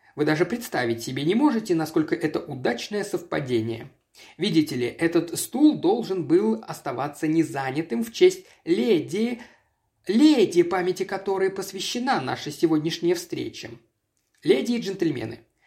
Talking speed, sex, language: 120 wpm, male, Russian